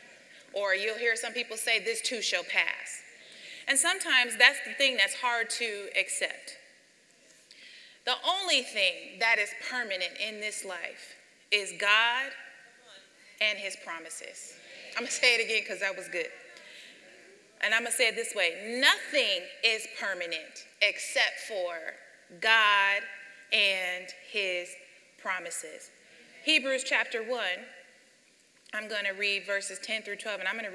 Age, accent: 30-49, American